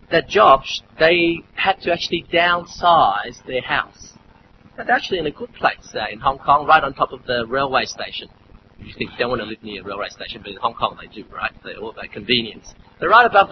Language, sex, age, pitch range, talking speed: English, male, 30-49, 130-180 Hz, 225 wpm